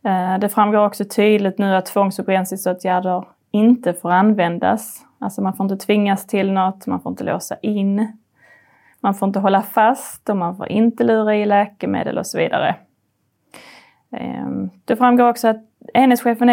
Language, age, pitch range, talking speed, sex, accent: Swedish, 20-39, 195-240 Hz, 165 wpm, female, native